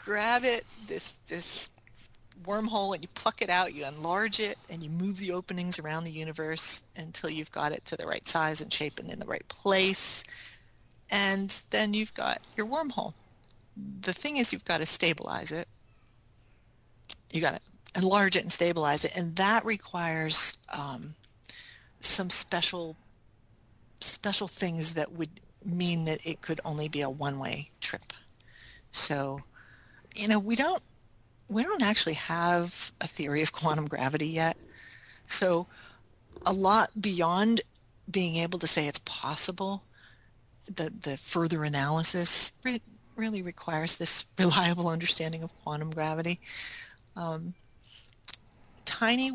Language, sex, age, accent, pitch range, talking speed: English, female, 40-59, American, 155-200 Hz, 140 wpm